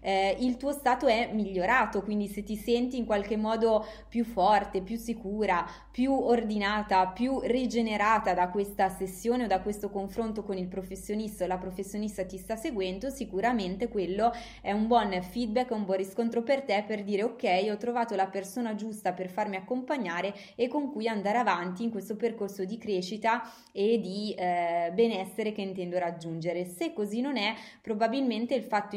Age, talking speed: 20-39, 170 wpm